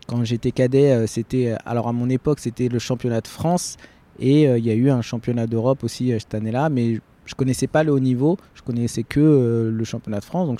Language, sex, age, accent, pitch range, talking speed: French, male, 20-39, French, 115-140 Hz, 245 wpm